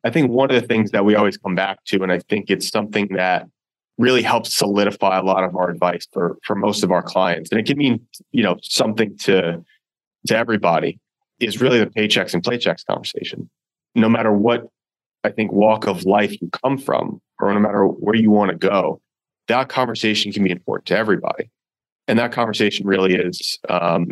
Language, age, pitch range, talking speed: English, 30-49, 95-110 Hz, 200 wpm